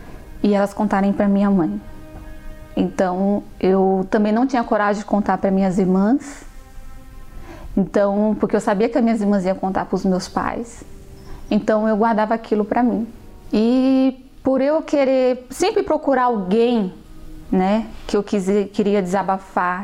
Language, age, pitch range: Portuguese, 20-39, 205-280 Hz